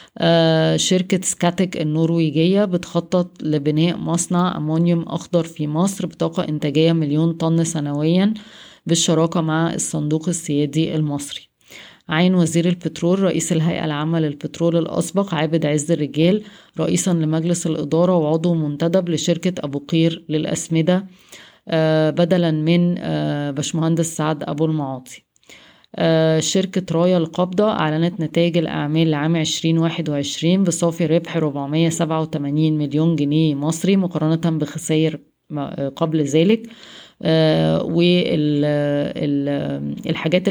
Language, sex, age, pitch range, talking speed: Arabic, female, 20-39, 155-175 Hz, 100 wpm